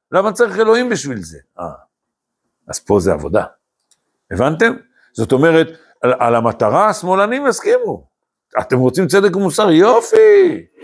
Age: 60-79